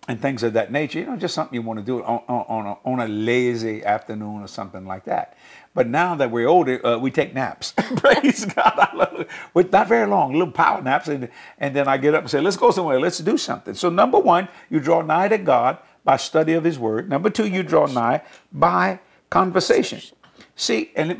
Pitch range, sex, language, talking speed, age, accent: 115-175 Hz, male, English, 240 wpm, 50-69, American